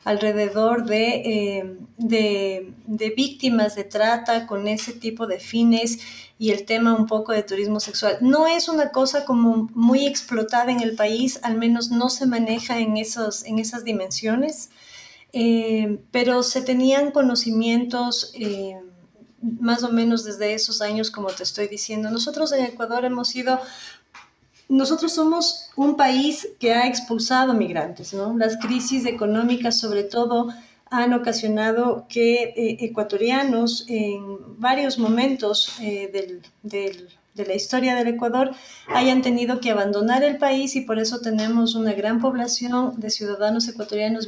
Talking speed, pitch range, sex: 145 wpm, 210-250 Hz, female